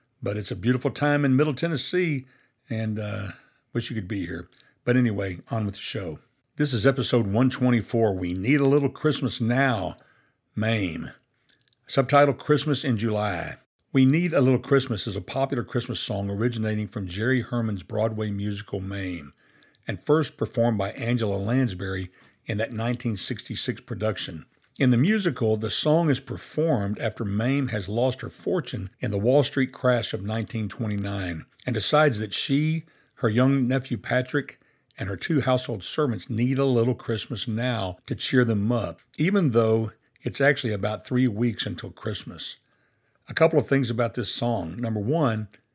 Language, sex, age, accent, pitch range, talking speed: English, male, 60-79, American, 110-135 Hz, 165 wpm